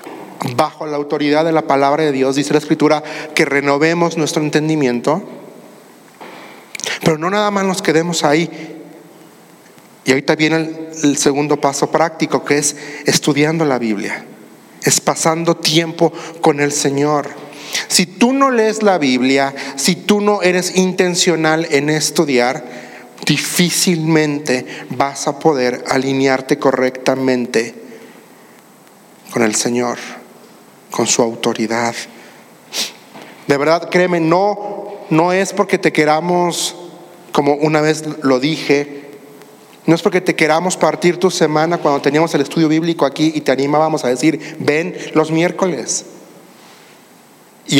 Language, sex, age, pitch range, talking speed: Spanish, male, 40-59, 145-175 Hz, 130 wpm